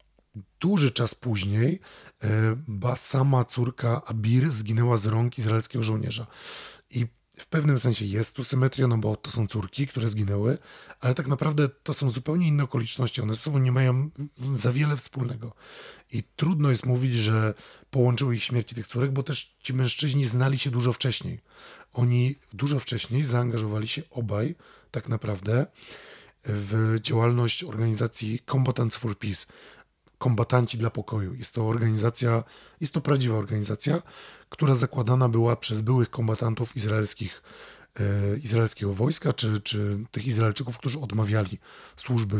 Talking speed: 140 wpm